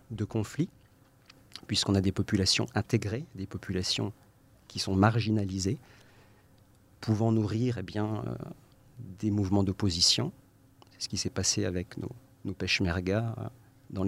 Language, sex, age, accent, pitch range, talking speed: French, male, 50-69, French, 100-120 Hz, 130 wpm